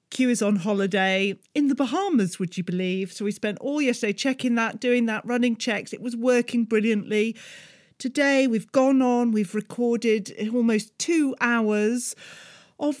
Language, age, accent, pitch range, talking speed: English, 40-59, British, 190-245 Hz, 160 wpm